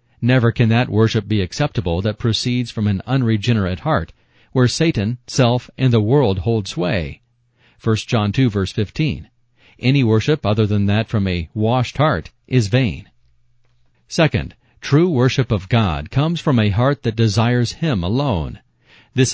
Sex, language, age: male, English, 40-59